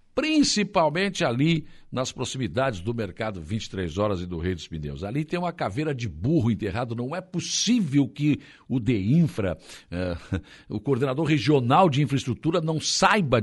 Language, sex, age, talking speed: Portuguese, male, 60-79, 145 wpm